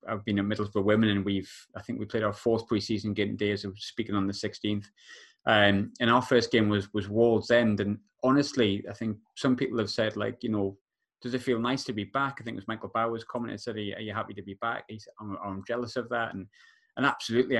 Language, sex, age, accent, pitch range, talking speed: English, male, 20-39, British, 100-120 Hz, 250 wpm